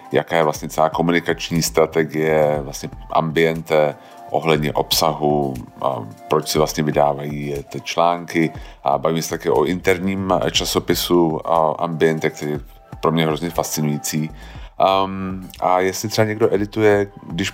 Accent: native